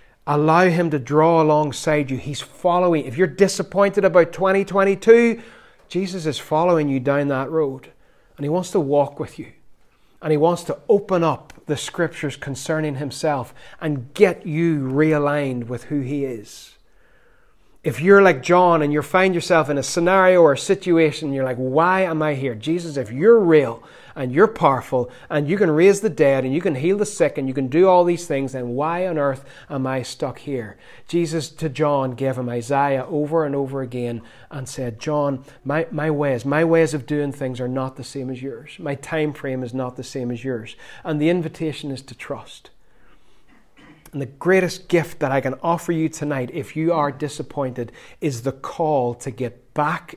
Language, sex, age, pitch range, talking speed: English, male, 30-49, 130-165 Hz, 190 wpm